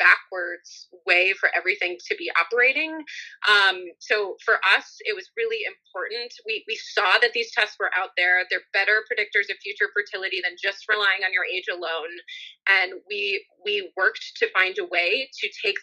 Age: 20-39